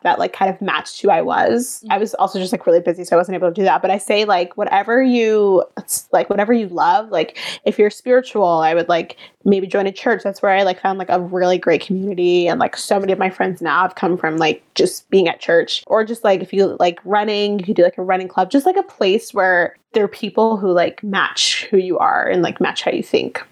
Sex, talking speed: female, 265 wpm